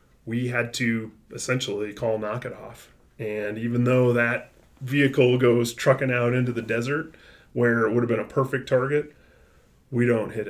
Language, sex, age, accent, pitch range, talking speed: English, male, 20-39, American, 110-130 Hz, 170 wpm